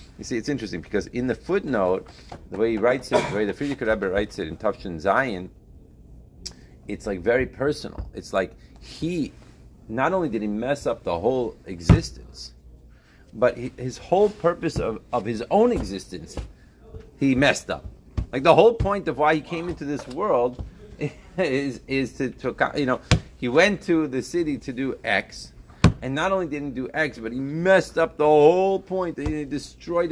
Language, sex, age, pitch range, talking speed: English, male, 30-49, 90-150 Hz, 180 wpm